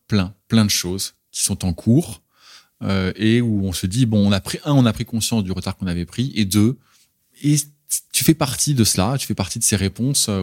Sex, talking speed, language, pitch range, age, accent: male, 240 wpm, French, 95-120 Hz, 20-39, French